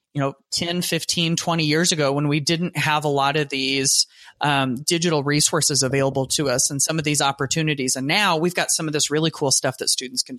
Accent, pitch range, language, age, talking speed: American, 140-170 Hz, English, 30-49, 225 wpm